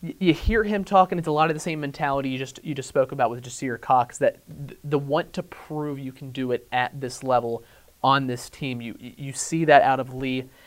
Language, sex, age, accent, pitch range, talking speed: English, male, 30-49, American, 125-150 Hz, 235 wpm